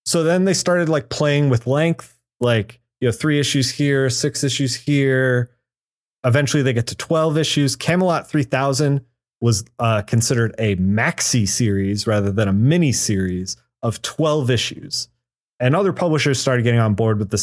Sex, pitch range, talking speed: male, 115-150 Hz, 165 wpm